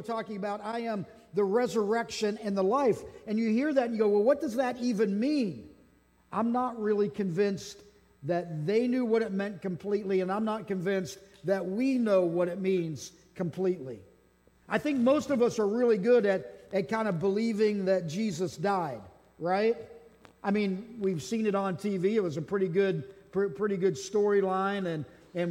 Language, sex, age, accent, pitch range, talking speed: English, male, 50-69, American, 185-220 Hz, 185 wpm